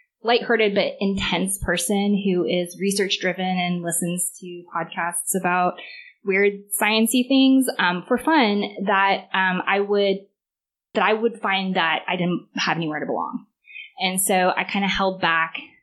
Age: 20-39